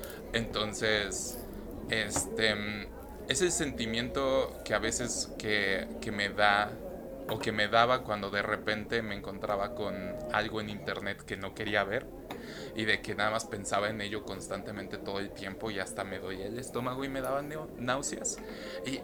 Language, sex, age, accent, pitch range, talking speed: Spanish, male, 20-39, Mexican, 100-120 Hz, 165 wpm